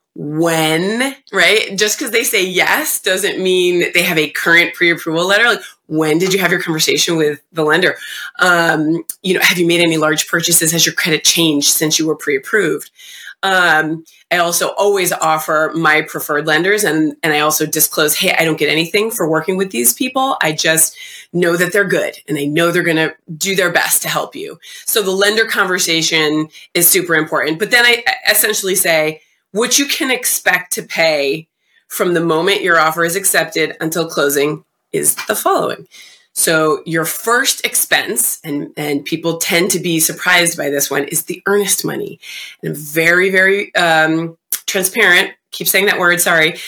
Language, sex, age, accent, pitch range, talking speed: English, female, 20-39, American, 155-195 Hz, 180 wpm